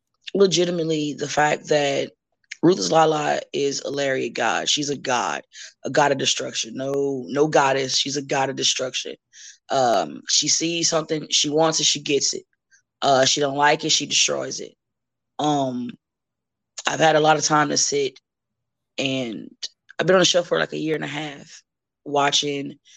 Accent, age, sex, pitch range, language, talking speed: American, 20-39, female, 135-160 Hz, English, 170 wpm